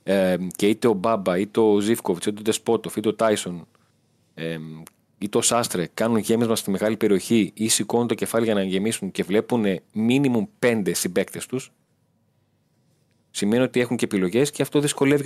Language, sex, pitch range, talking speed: Greek, male, 105-125 Hz, 175 wpm